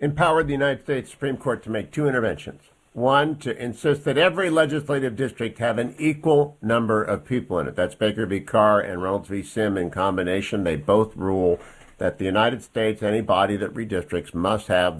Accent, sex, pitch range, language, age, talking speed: American, male, 100-130 Hz, English, 50-69, 190 wpm